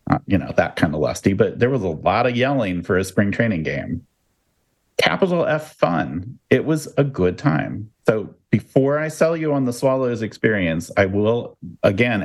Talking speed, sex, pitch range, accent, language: 185 wpm, male, 100-130 Hz, American, English